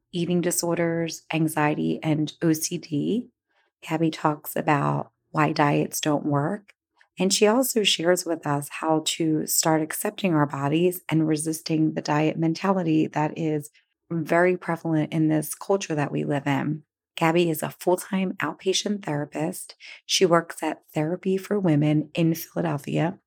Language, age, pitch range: English, 30-49, 150-175 Hz